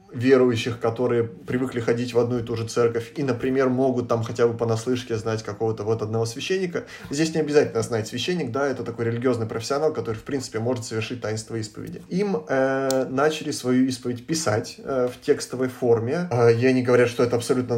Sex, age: male, 20-39